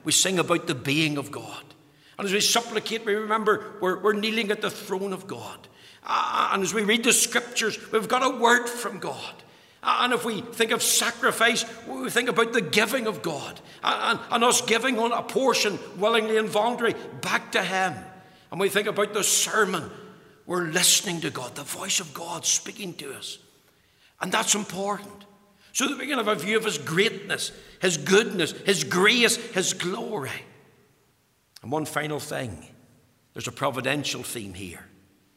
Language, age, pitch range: English, 60-79, 135-220 Hz